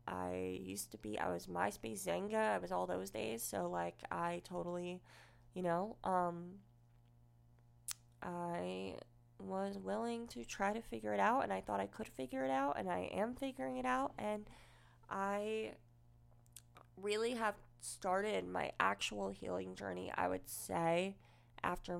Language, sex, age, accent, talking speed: English, female, 20-39, American, 155 wpm